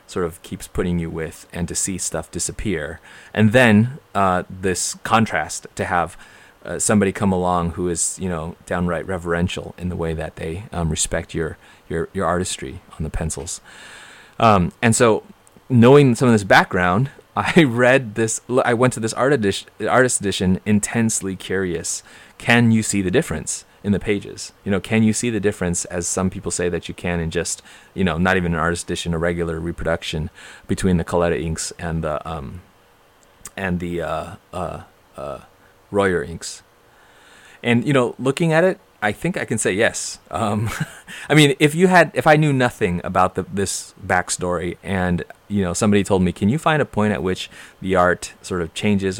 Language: English